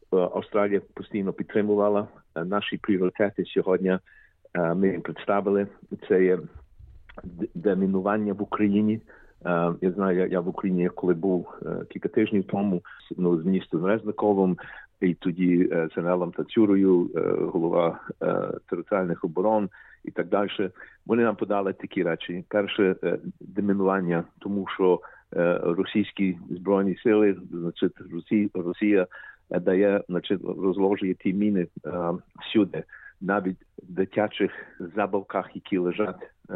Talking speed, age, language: 110 wpm, 50-69, Ukrainian